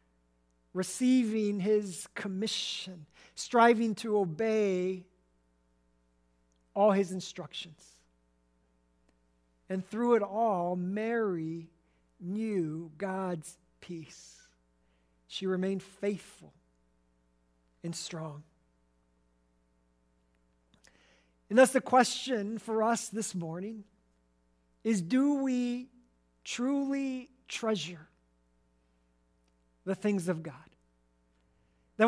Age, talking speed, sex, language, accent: 50-69, 75 wpm, male, English, American